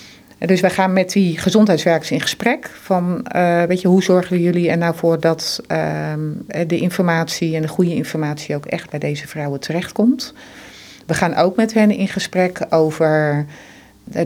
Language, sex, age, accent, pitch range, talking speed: Dutch, female, 40-59, Dutch, 155-185 Hz, 175 wpm